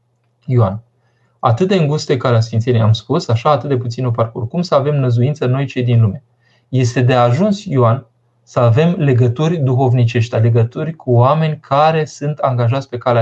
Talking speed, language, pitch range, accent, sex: 170 wpm, Romanian, 120-150 Hz, native, male